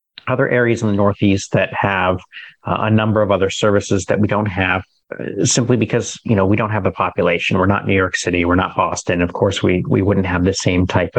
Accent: American